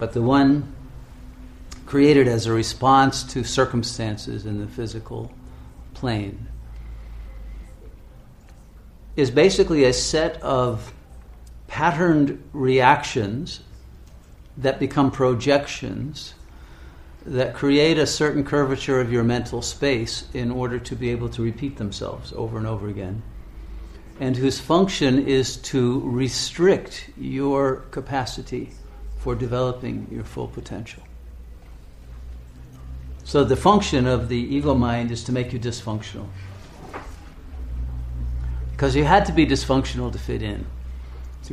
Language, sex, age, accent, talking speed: English, male, 50-69, American, 115 wpm